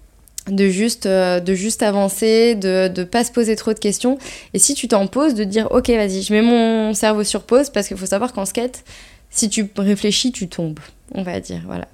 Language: French